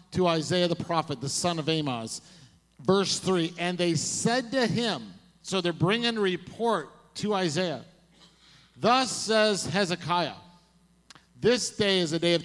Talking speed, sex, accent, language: 145 wpm, male, American, English